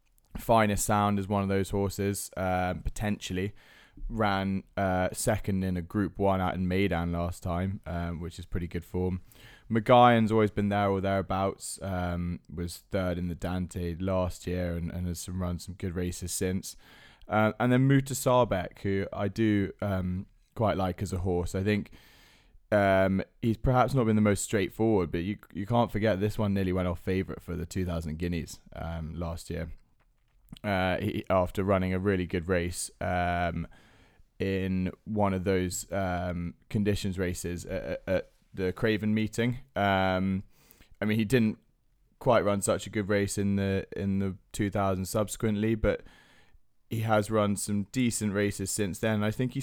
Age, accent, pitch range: 20-39, British, 90-105 Hz